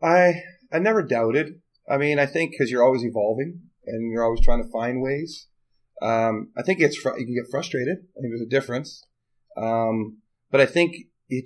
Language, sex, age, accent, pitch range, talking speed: English, male, 30-49, American, 115-135 Hz, 200 wpm